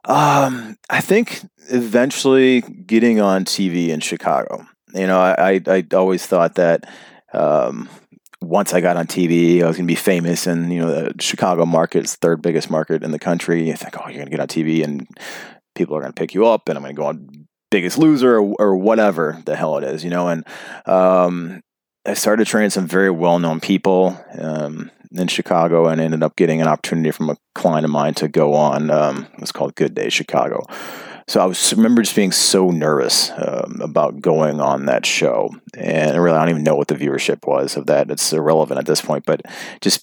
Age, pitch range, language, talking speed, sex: 30-49, 80-100 Hz, English, 210 wpm, male